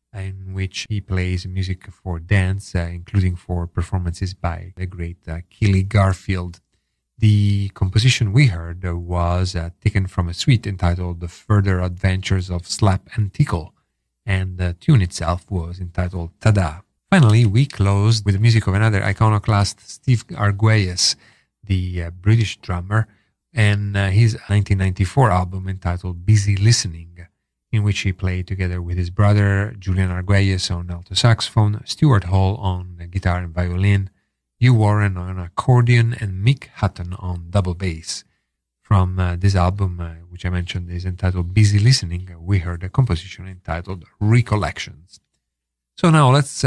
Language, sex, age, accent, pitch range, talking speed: English, male, 40-59, Italian, 90-105 Hz, 150 wpm